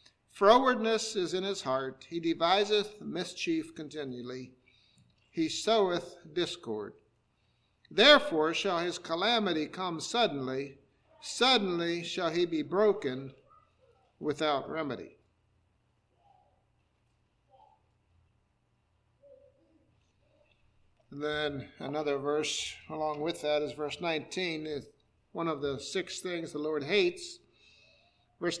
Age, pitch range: 50-69, 120-175 Hz